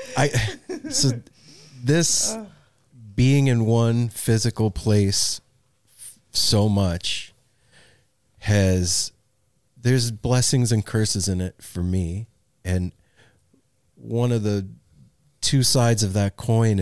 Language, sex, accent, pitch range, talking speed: English, male, American, 100-125 Hz, 105 wpm